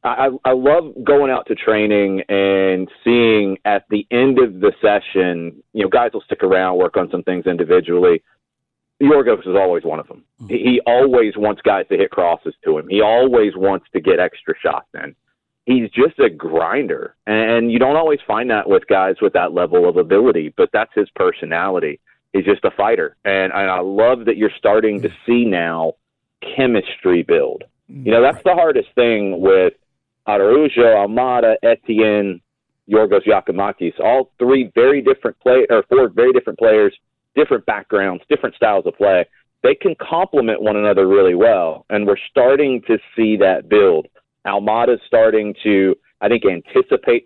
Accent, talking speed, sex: American, 170 wpm, male